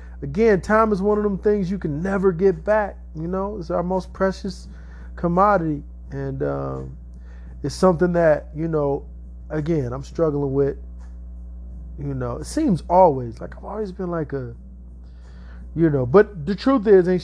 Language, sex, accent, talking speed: English, male, American, 165 wpm